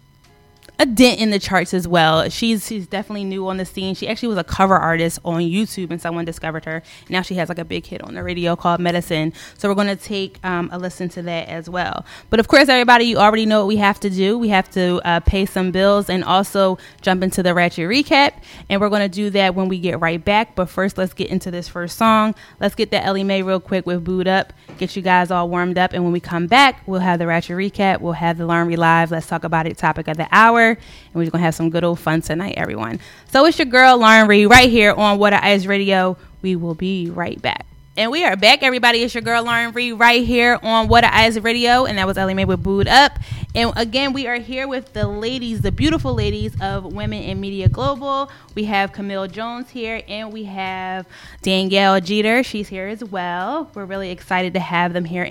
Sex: female